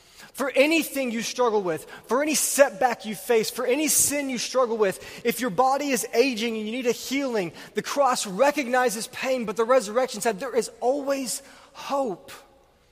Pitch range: 195-255 Hz